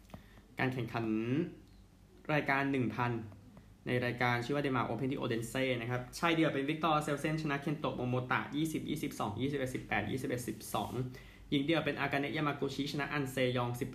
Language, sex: Thai, male